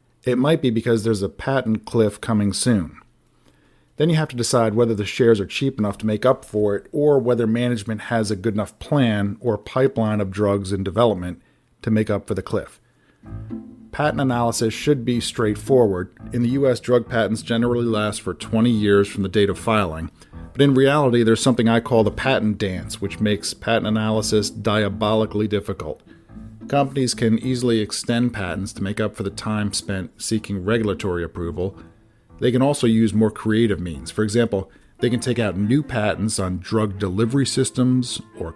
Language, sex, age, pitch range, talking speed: English, male, 40-59, 100-120 Hz, 180 wpm